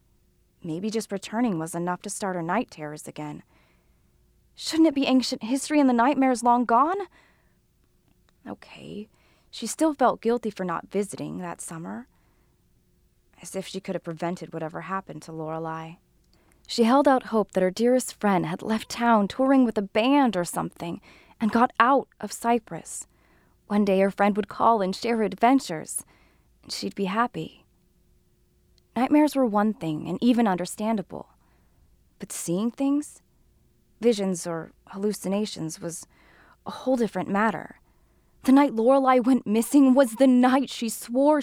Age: 20-39